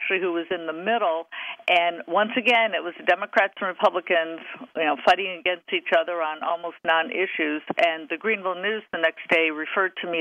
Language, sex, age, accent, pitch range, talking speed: English, female, 50-69, American, 165-225 Hz, 190 wpm